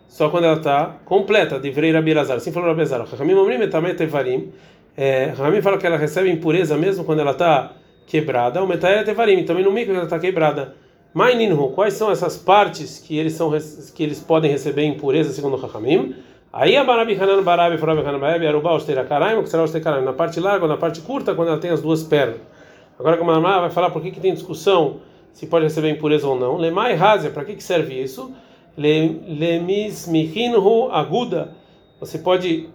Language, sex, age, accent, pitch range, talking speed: Portuguese, male, 40-59, Brazilian, 150-185 Hz, 185 wpm